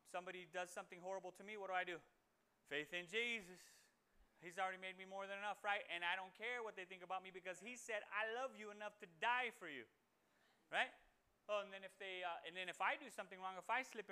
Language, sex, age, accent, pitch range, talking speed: English, male, 30-49, American, 175-225 Hz, 245 wpm